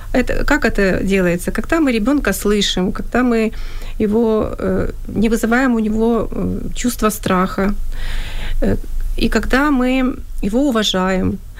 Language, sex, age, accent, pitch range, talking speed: Ukrainian, female, 30-49, native, 200-245 Hz, 125 wpm